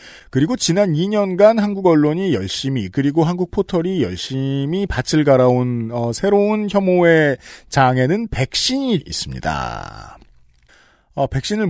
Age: 40-59